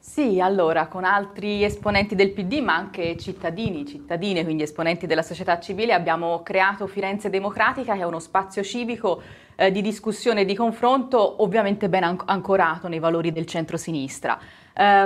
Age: 20-39